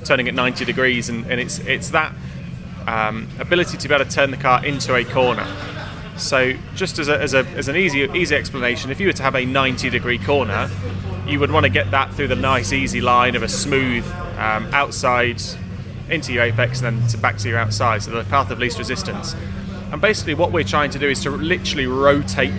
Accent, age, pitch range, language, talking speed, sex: British, 20-39, 115-140 Hz, English, 225 wpm, male